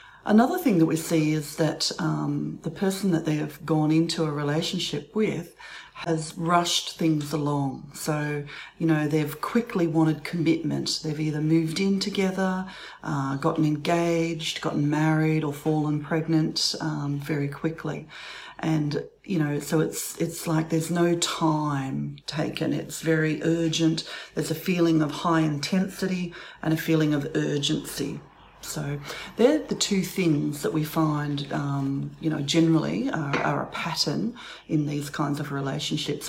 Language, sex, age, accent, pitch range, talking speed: English, female, 40-59, Australian, 150-170 Hz, 150 wpm